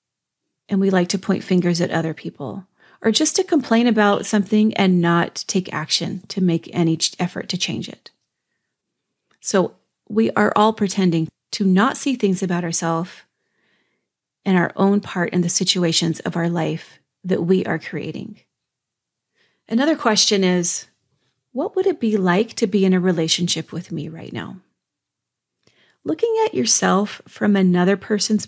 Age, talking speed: 30-49, 155 wpm